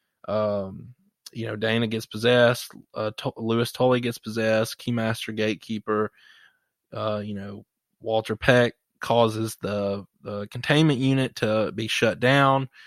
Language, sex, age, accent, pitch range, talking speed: English, male, 20-39, American, 110-125 Hz, 130 wpm